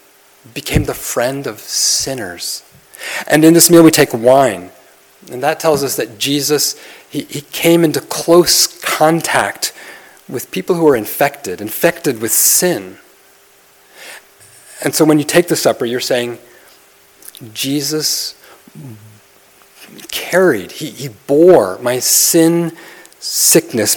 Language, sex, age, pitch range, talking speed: English, male, 40-59, 115-150 Hz, 125 wpm